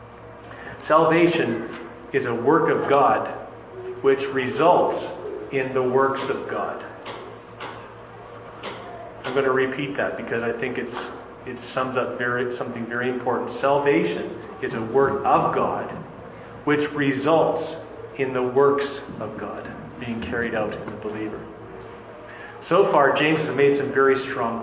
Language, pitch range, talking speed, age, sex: English, 125-170 Hz, 135 wpm, 40-59, male